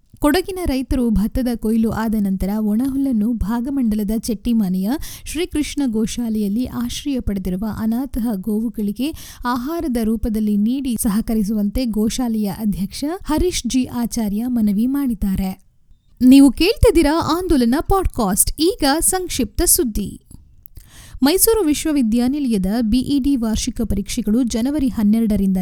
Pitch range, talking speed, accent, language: 215-275 Hz, 95 wpm, native, Kannada